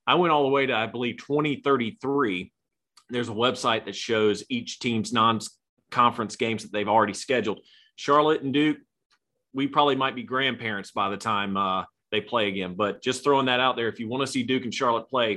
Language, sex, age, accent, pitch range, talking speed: English, male, 30-49, American, 115-165 Hz, 205 wpm